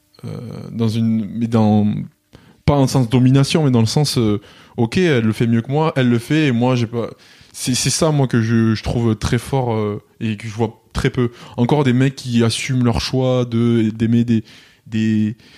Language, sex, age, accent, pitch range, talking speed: French, male, 20-39, French, 110-130 Hz, 220 wpm